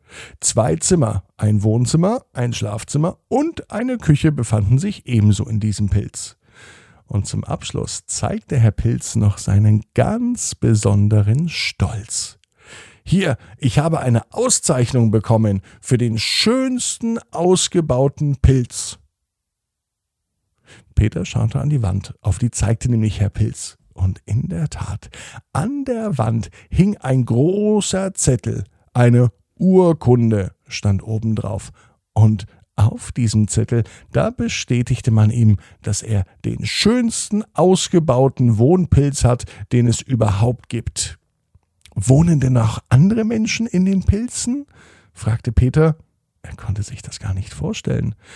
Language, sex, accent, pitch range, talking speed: German, male, German, 105-165 Hz, 125 wpm